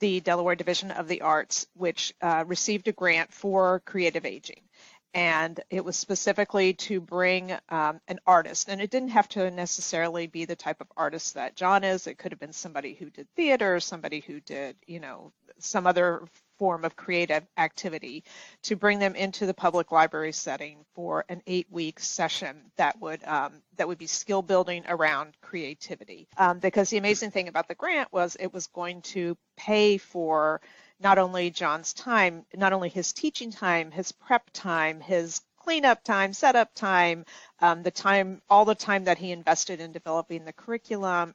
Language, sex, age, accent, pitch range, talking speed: English, female, 40-59, American, 165-195 Hz, 180 wpm